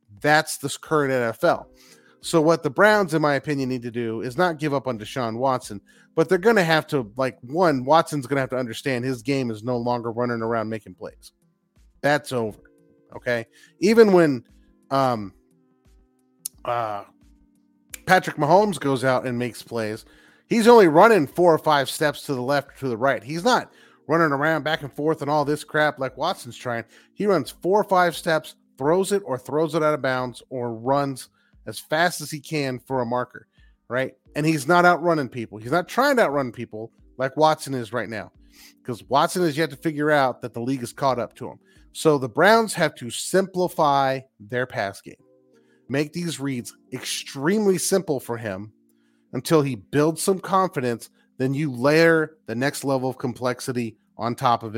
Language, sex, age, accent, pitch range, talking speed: English, male, 30-49, American, 120-160 Hz, 190 wpm